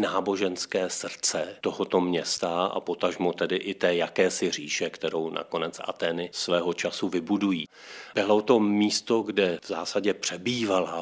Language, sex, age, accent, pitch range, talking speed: Czech, male, 40-59, native, 90-105 Hz, 130 wpm